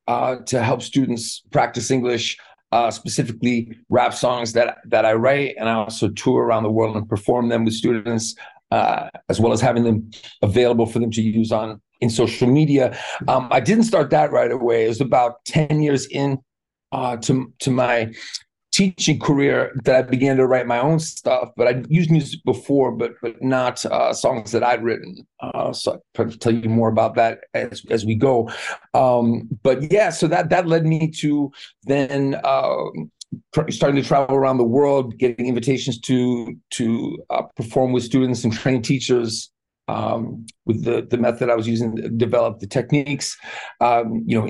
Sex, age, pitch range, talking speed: male, 40-59, 115-140 Hz, 185 wpm